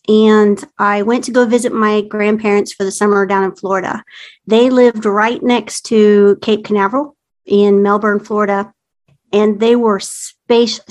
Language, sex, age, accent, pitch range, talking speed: English, female, 50-69, American, 200-235 Hz, 155 wpm